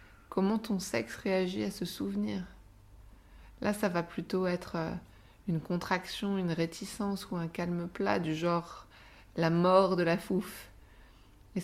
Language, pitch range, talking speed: French, 160-200 Hz, 145 wpm